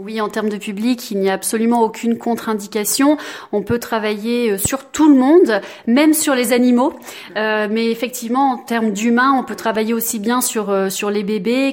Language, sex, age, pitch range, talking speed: French, female, 30-49, 205-240 Hz, 190 wpm